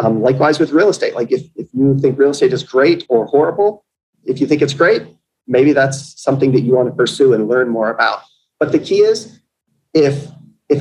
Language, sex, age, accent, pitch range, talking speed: English, male, 30-49, American, 120-145 Hz, 215 wpm